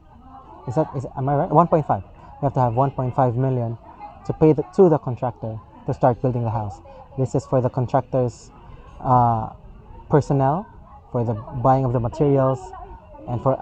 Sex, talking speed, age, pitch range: male, 165 wpm, 20-39, 120-145 Hz